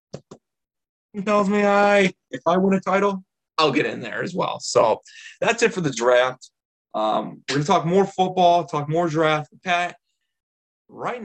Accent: American